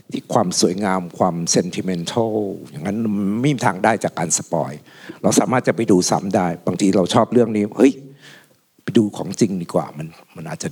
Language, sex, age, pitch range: Thai, male, 60-79, 105-135 Hz